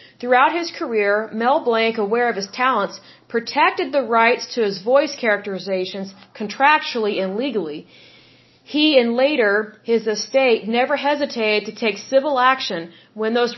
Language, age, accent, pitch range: English, 40-59, American, 210-270 Hz